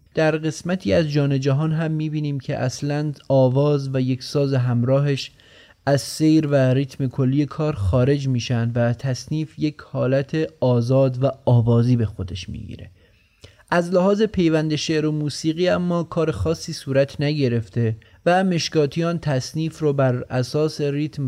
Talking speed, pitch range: 140 wpm, 120-150 Hz